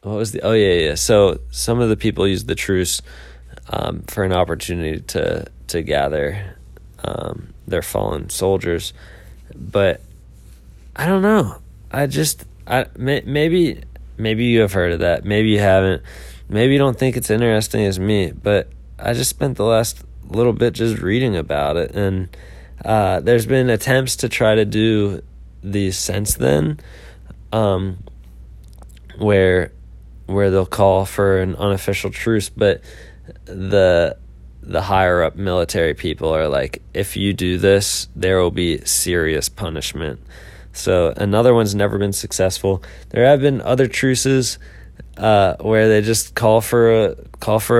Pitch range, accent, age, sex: 80-110 Hz, American, 20-39, male